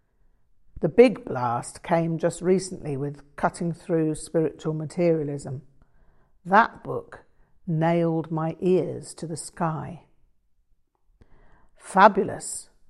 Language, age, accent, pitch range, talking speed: English, 50-69, British, 155-200 Hz, 95 wpm